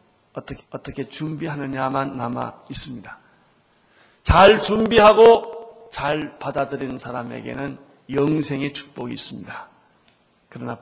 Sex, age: male, 40-59